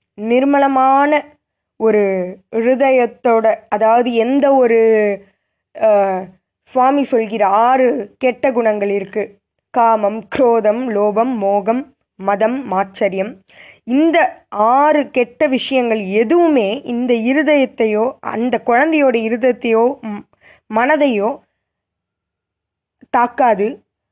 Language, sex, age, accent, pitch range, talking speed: Tamil, female, 20-39, native, 210-275 Hz, 75 wpm